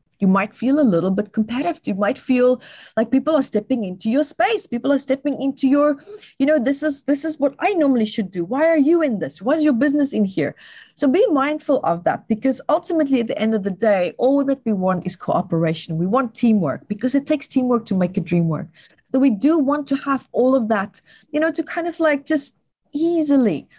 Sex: female